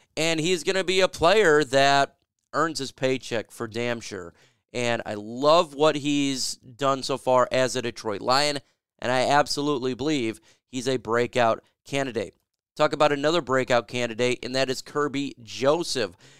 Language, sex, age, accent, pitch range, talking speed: English, male, 30-49, American, 120-145 Hz, 160 wpm